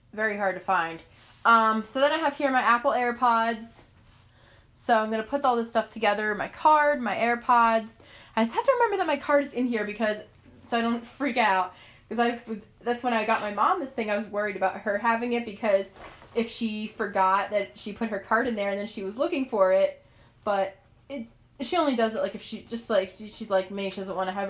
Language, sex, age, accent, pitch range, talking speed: English, female, 20-39, American, 200-250 Hz, 240 wpm